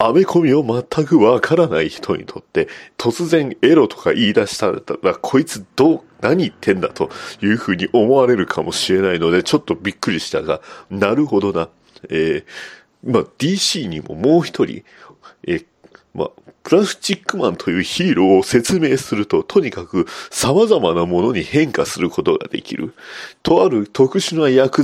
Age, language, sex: 40-59, Japanese, male